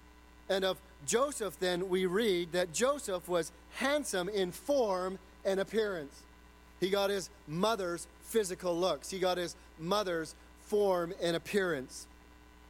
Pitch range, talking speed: 155-205 Hz, 130 wpm